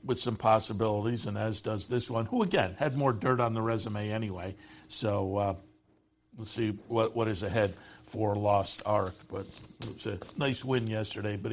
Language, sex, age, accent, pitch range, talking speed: English, male, 60-79, American, 110-140 Hz, 185 wpm